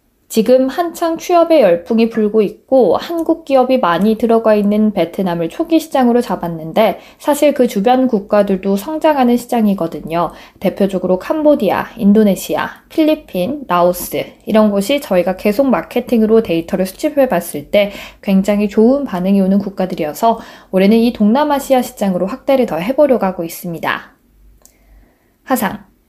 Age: 20-39